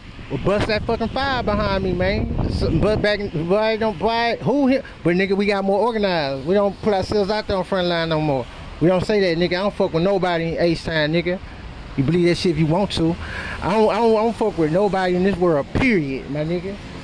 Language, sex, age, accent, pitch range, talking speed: English, male, 30-49, American, 190-235 Hz, 245 wpm